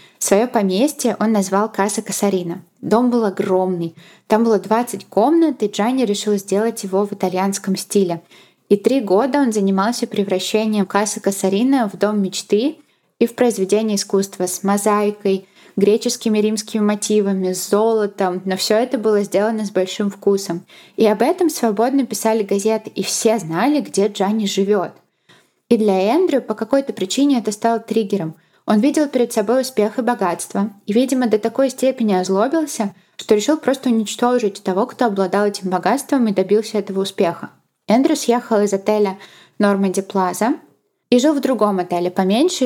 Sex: female